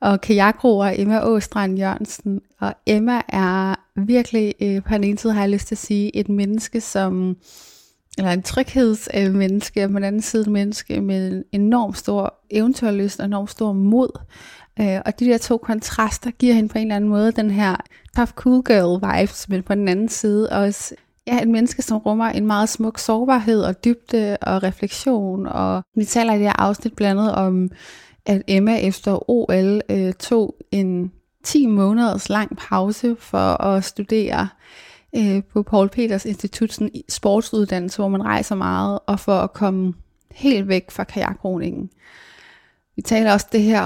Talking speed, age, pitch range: 175 wpm, 30-49, 195-220 Hz